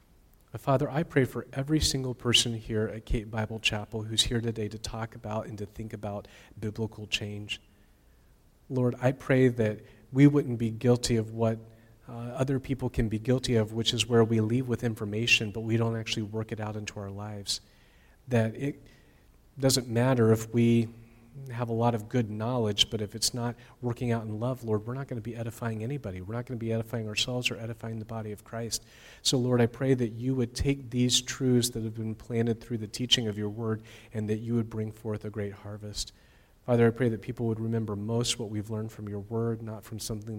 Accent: American